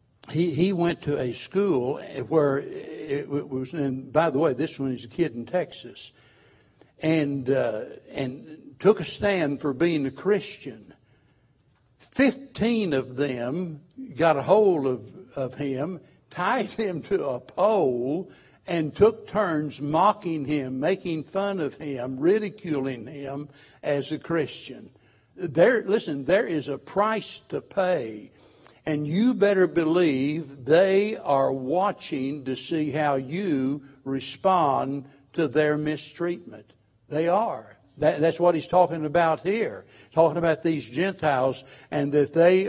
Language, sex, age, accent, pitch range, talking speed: English, male, 60-79, American, 135-175 Hz, 135 wpm